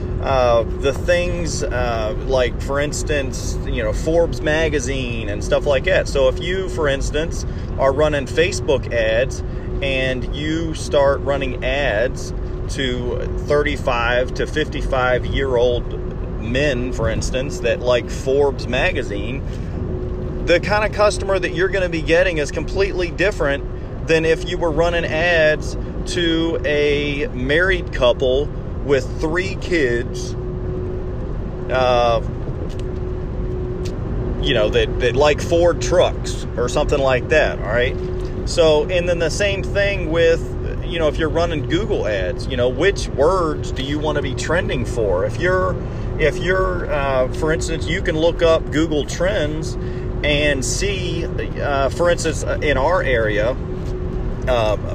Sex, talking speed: male, 140 wpm